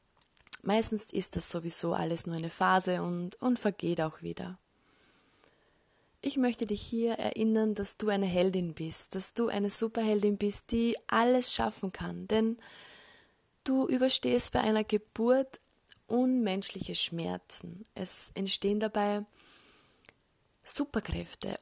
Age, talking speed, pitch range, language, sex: 20-39, 120 wpm, 185-225 Hz, German, female